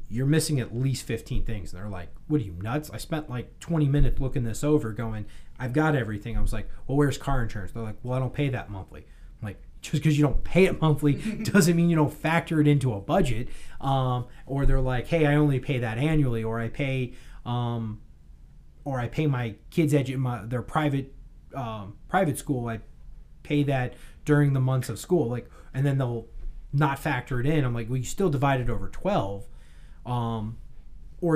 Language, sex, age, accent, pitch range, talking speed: English, male, 30-49, American, 115-150 Hz, 210 wpm